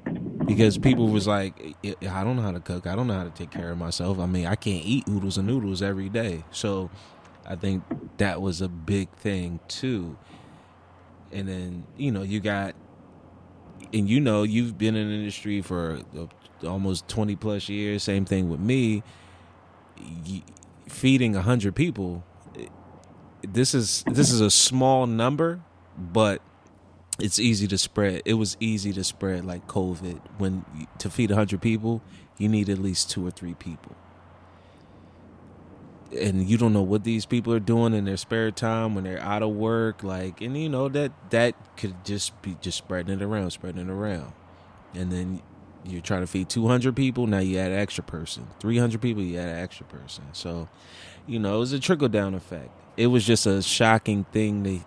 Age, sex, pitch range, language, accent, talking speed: 20-39, male, 90-110 Hz, English, American, 185 wpm